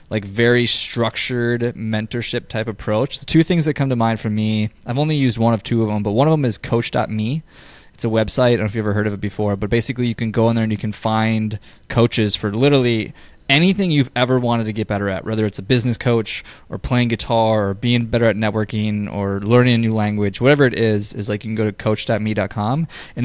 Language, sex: English, male